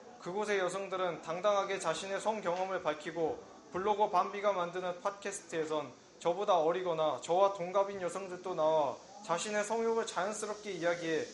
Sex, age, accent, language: male, 20-39, native, Korean